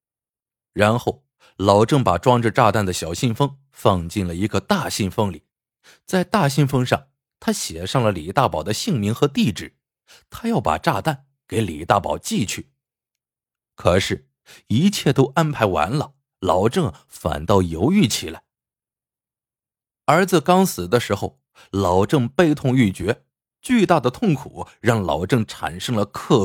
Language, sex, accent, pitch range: Chinese, male, native, 95-145 Hz